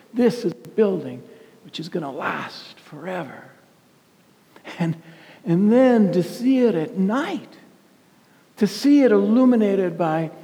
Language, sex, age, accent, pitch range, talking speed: English, male, 60-79, American, 170-220 Hz, 130 wpm